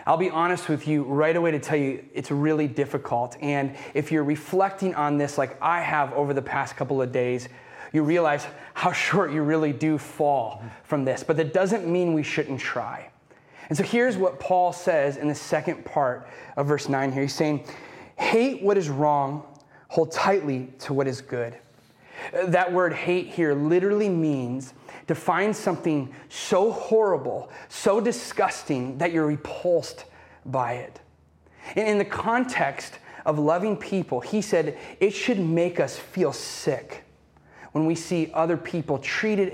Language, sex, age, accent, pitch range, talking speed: English, male, 30-49, American, 140-175 Hz, 165 wpm